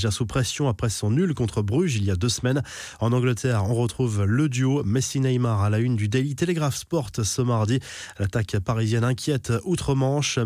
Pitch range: 110-135 Hz